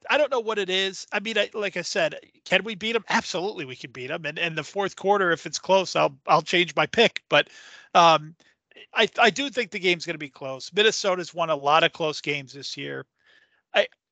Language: English